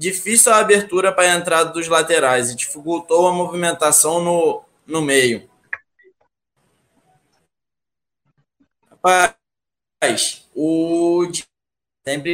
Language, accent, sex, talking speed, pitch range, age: Portuguese, Brazilian, male, 90 wpm, 155-190 Hz, 20-39